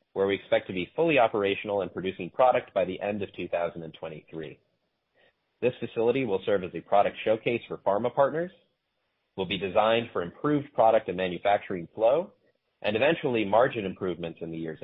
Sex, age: male, 30-49